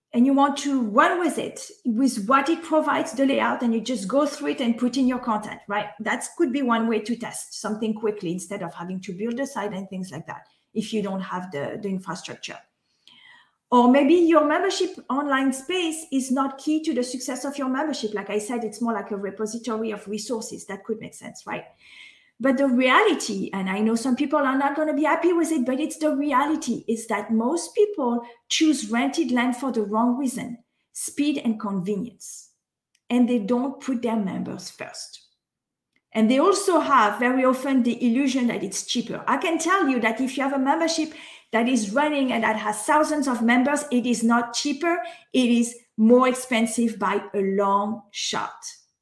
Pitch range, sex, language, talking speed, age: 220-285 Hz, female, English, 200 wpm, 40-59